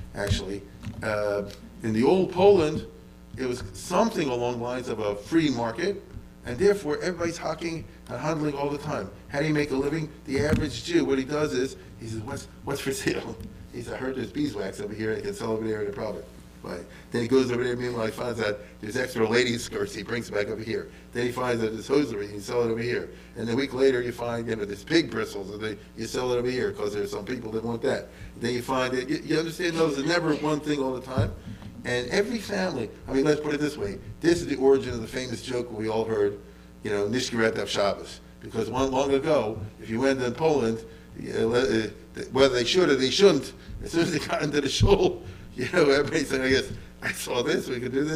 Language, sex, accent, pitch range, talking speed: English, male, American, 110-155 Hz, 230 wpm